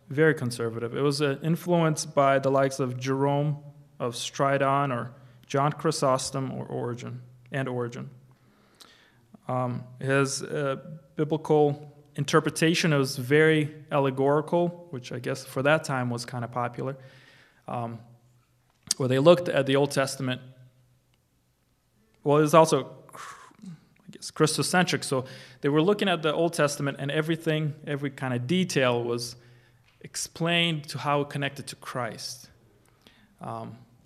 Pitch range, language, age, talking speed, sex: 130-160 Hz, English, 20-39, 135 wpm, male